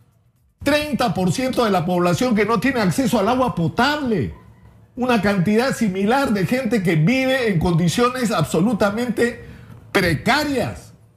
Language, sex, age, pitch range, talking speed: Spanish, male, 50-69, 180-245 Hz, 130 wpm